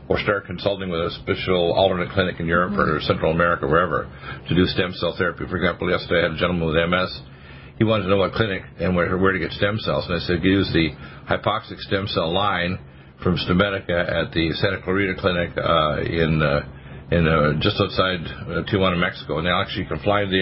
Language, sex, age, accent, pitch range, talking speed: English, male, 50-69, American, 85-105 Hz, 220 wpm